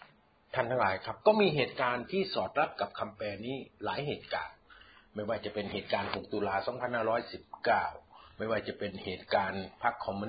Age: 60-79